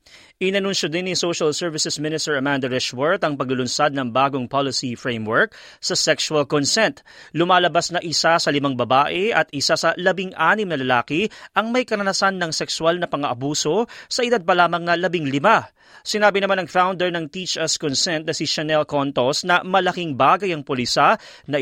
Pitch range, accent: 160-185 Hz, native